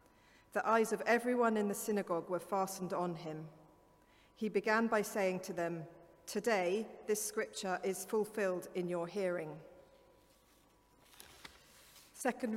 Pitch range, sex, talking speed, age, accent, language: 175-215 Hz, female, 125 wpm, 40-59, British, English